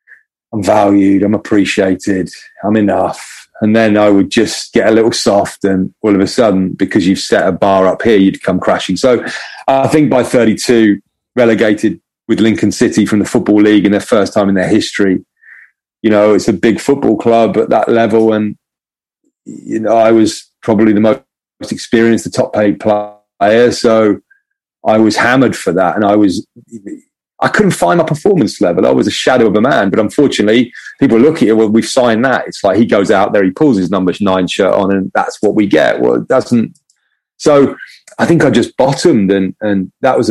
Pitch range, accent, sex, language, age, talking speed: 100-110 Hz, British, male, English, 30-49, 200 wpm